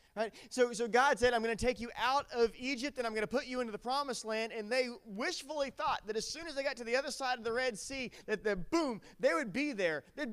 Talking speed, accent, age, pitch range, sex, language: 275 wpm, American, 30-49, 165-250 Hz, male, English